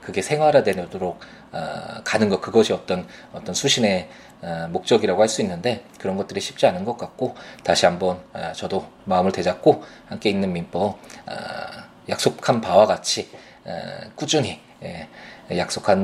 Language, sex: Korean, male